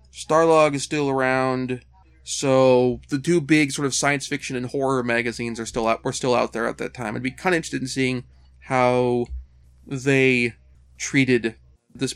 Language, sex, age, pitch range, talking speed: English, male, 30-49, 115-145 Hz, 180 wpm